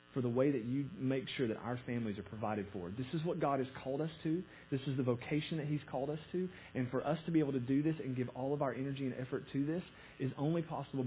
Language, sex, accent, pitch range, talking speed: English, male, American, 125-155 Hz, 280 wpm